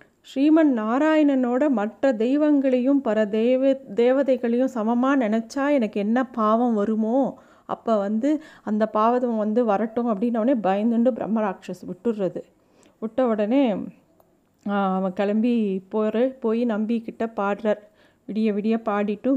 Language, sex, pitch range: Tamil, female, 200-250 Hz